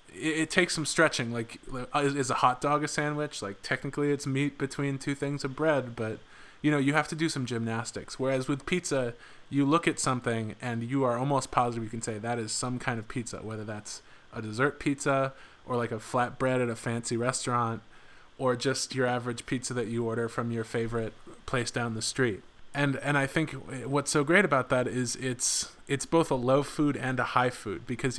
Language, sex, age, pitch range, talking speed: English, male, 20-39, 115-140 Hz, 210 wpm